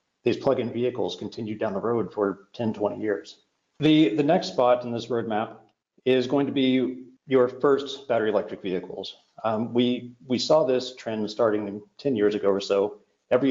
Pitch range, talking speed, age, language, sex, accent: 105-125 Hz, 180 wpm, 40-59, English, male, American